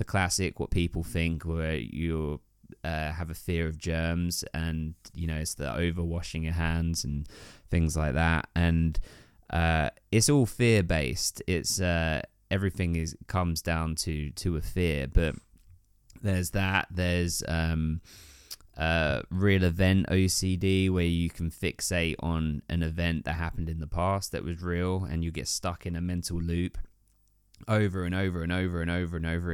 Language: English